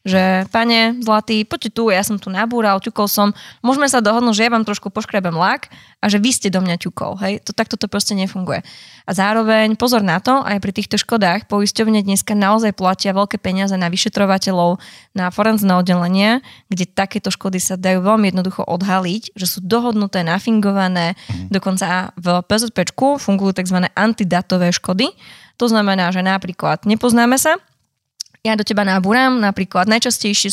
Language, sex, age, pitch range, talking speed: Slovak, female, 20-39, 185-220 Hz, 165 wpm